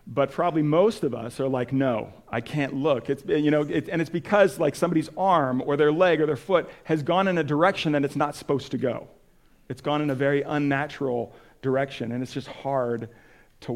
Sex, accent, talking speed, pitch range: male, American, 220 wpm, 125-150 Hz